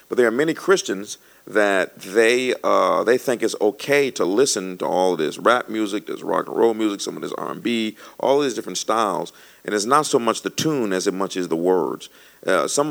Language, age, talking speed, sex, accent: English, 50-69, 220 wpm, male, American